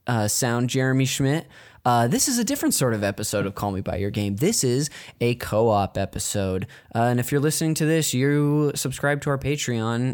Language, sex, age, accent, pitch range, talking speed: English, male, 10-29, American, 105-135 Hz, 205 wpm